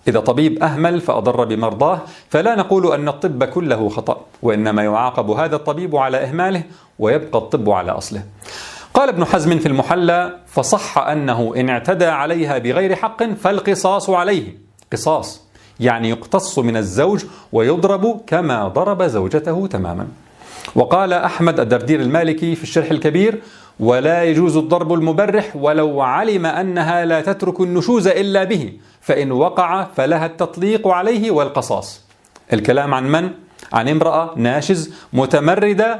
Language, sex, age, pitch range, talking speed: Arabic, male, 40-59, 130-190 Hz, 130 wpm